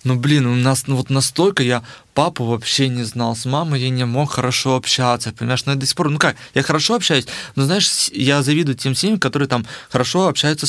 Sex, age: male, 20-39